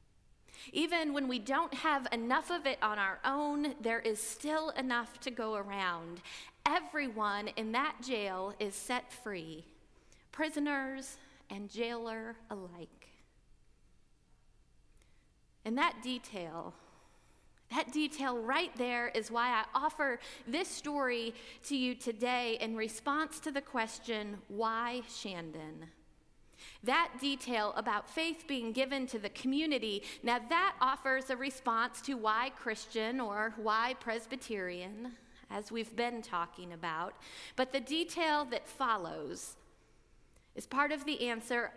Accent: American